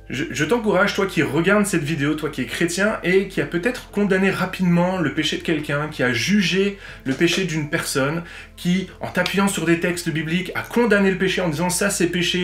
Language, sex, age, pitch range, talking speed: French, male, 30-49, 155-205 Hz, 220 wpm